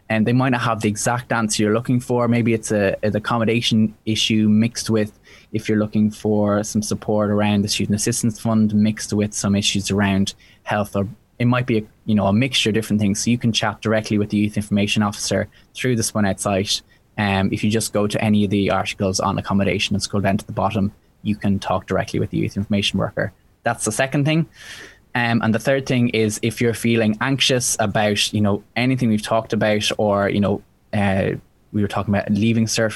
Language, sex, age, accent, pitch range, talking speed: English, male, 20-39, Irish, 100-115 Hz, 220 wpm